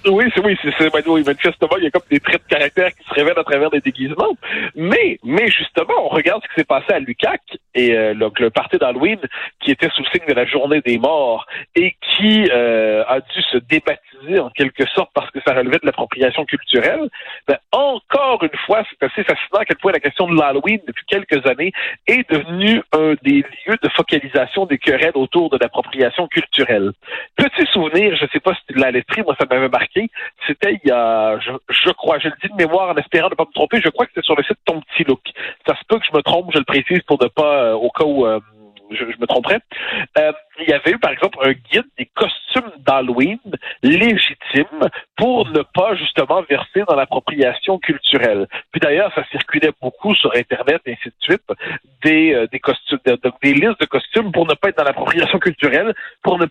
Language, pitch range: French, 135-195 Hz